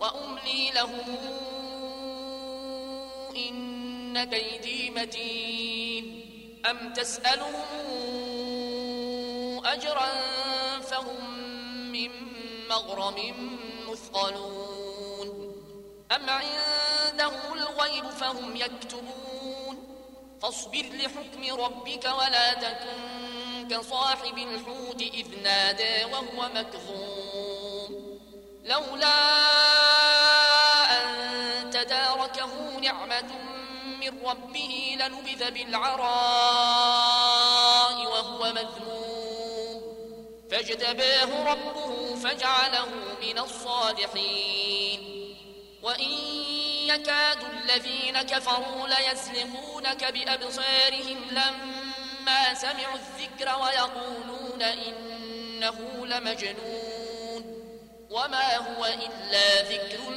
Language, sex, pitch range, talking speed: Arabic, male, 230-265 Hz, 60 wpm